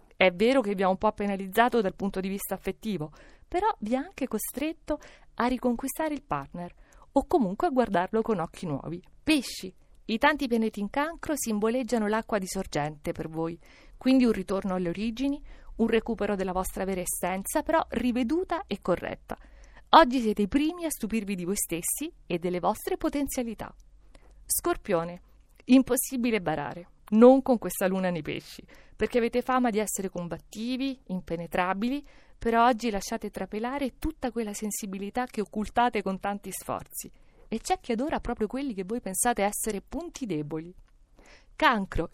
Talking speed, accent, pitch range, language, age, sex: 155 wpm, native, 195-255 Hz, Italian, 50-69, female